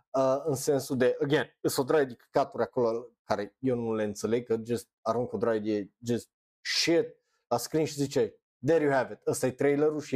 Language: Romanian